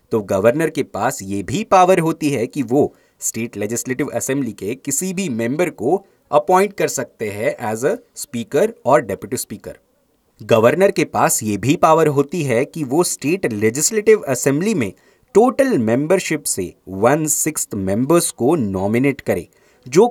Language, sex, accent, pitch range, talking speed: Hindi, male, native, 115-185 Hz, 150 wpm